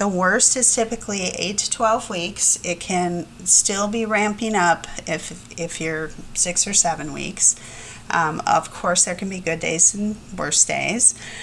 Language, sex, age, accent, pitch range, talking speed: English, female, 30-49, American, 175-220 Hz, 170 wpm